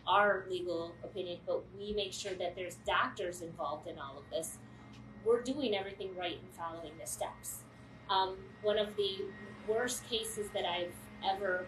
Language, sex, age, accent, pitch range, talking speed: English, female, 30-49, American, 180-215 Hz, 165 wpm